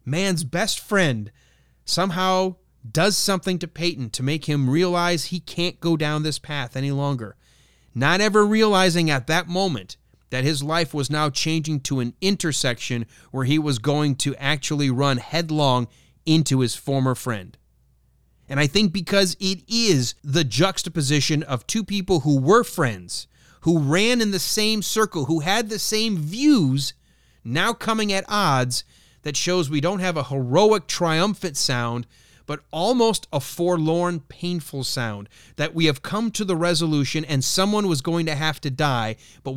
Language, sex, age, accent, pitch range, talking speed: English, male, 30-49, American, 130-180 Hz, 160 wpm